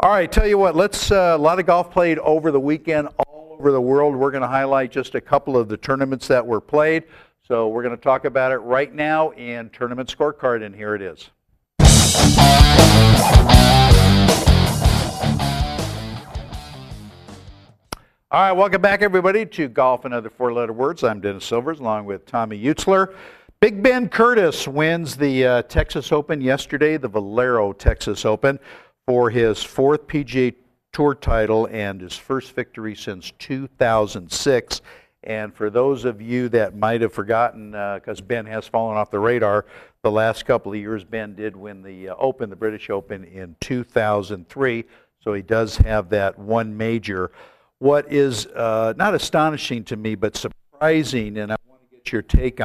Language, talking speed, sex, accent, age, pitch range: English, 170 wpm, male, American, 60-79, 105-140 Hz